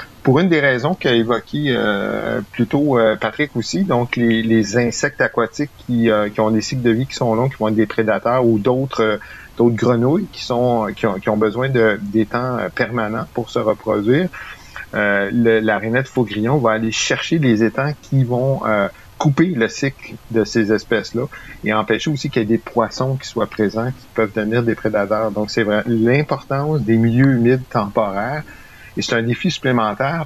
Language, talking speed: French, 195 wpm